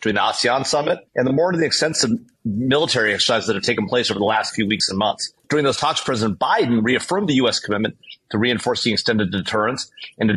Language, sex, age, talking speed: English, male, 30-49, 215 wpm